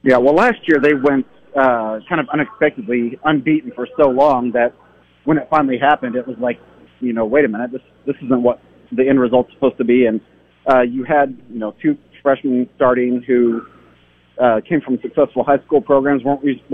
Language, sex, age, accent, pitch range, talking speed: English, male, 30-49, American, 115-140 Hz, 200 wpm